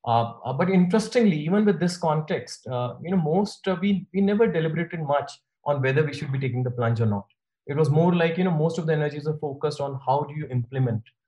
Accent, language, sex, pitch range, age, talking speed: Indian, English, male, 120-155 Hz, 20-39, 235 wpm